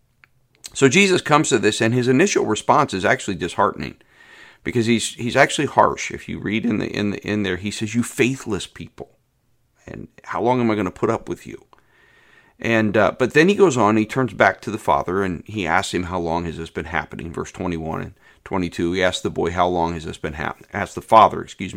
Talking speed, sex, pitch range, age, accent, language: 235 wpm, male, 90-125 Hz, 40-59, American, English